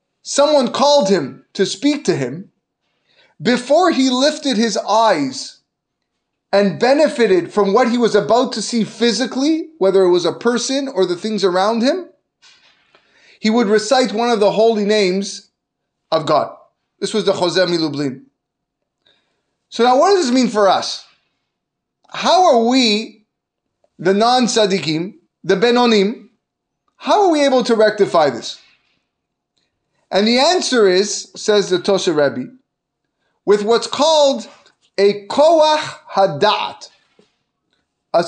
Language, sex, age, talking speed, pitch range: English, male, 30-49, 135 wpm, 200-275 Hz